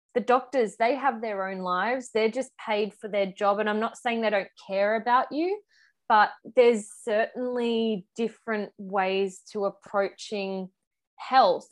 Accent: Australian